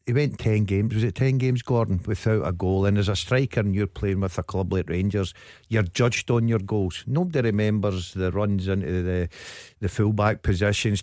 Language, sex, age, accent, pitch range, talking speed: English, male, 50-69, British, 100-125 Hz, 210 wpm